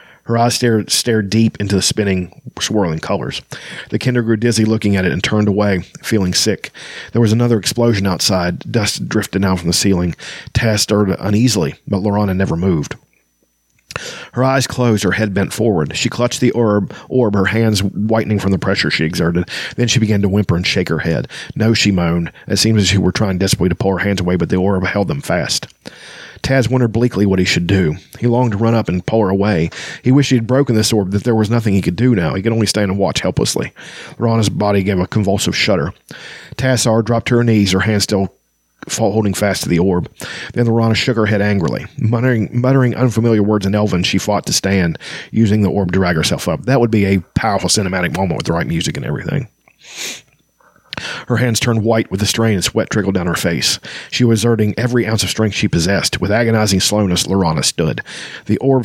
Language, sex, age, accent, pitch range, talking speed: English, male, 40-59, American, 95-115 Hz, 220 wpm